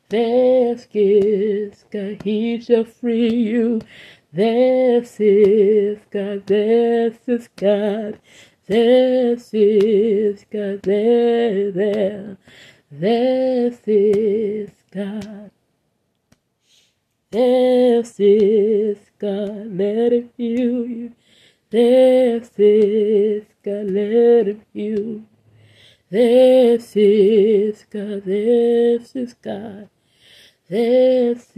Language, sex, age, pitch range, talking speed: English, female, 20-39, 205-260 Hz, 80 wpm